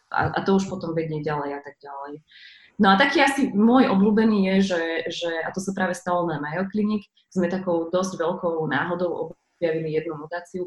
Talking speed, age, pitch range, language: 195 wpm, 20-39, 155-185 Hz, Slovak